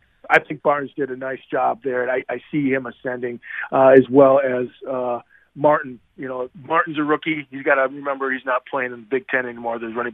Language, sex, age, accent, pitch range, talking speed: English, male, 40-59, American, 125-150 Hz, 230 wpm